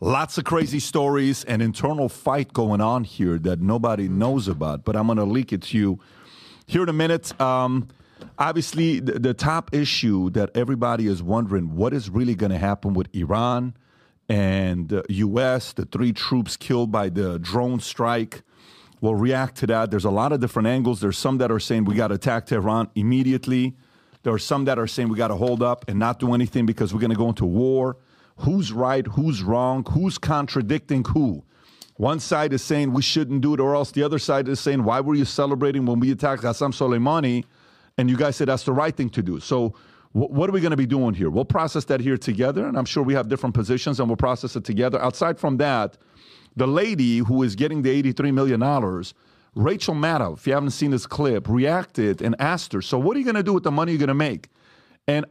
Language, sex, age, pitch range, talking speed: English, male, 40-59, 115-140 Hz, 220 wpm